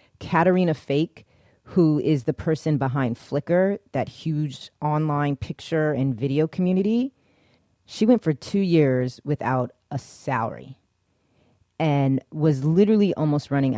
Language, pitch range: English, 130-170 Hz